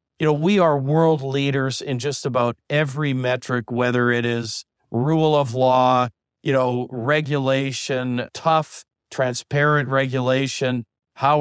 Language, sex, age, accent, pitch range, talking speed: English, male, 50-69, American, 125-145 Hz, 125 wpm